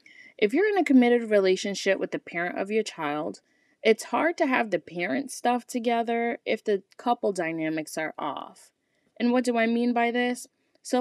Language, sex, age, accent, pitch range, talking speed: English, female, 20-39, American, 165-235 Hz, 185 wpm